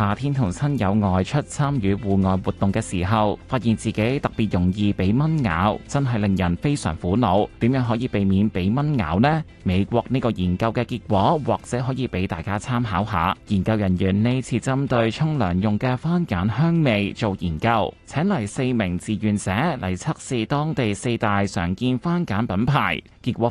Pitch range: 100-140 Hz